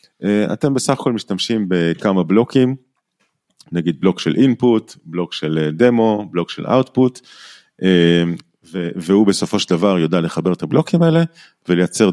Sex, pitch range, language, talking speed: male, 90-130 Hz, Hebrew, 130 wpm